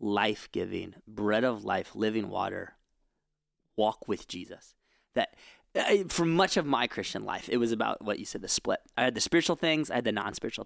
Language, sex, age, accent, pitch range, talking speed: English, male, 20-39, American, 115-155 Hz, 190 wpm